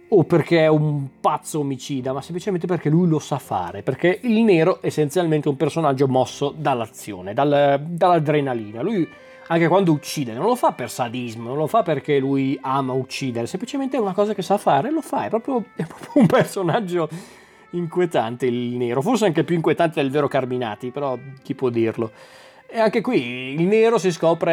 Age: 20-39